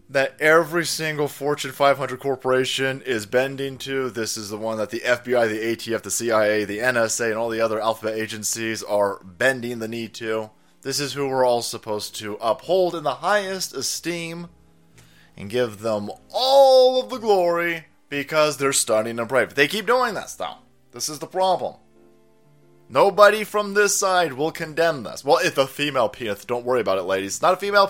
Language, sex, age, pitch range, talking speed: English, male, 20-39, 110-170 Hz, 185 wpm